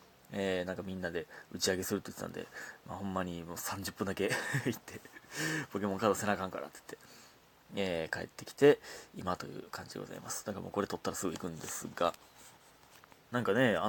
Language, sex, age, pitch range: Japanese, male, 30-49, 95-150 Hz